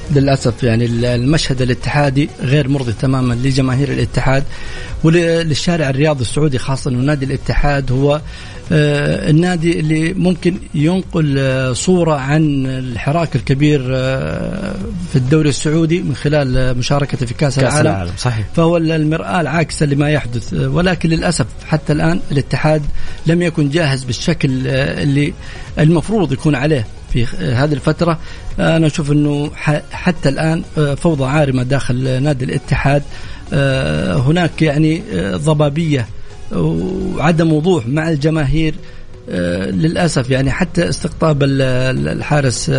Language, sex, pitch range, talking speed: English, male, 130-160 Hz, 110 wpm